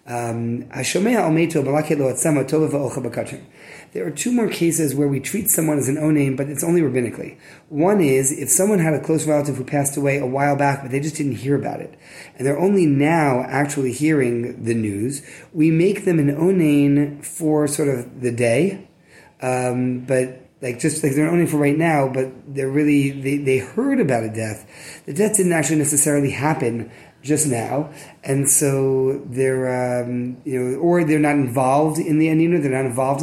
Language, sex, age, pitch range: English, male, 30-49, 135-160 Hz